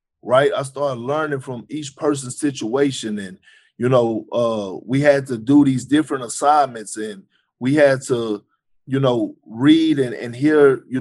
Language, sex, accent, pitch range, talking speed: English, male, American, 120-150 Hz, 165 wpm